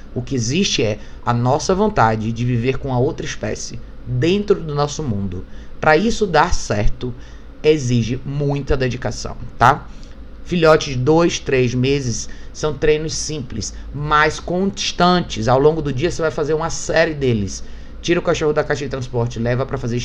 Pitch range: 120-155 Hz